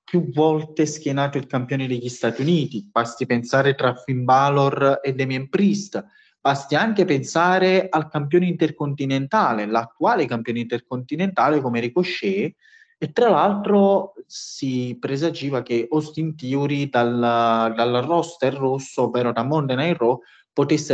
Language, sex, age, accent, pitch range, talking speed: Italian, male, 20-39, native, 120-160 Hz, 125 wpm